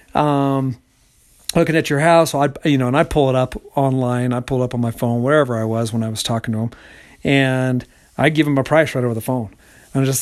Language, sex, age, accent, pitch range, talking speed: English, male, 50-69, American, 130-160 Hz, 255 wpm